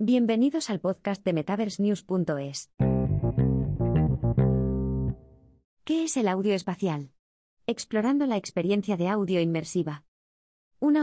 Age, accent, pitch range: 20-39, Spanish, 155-215 Hz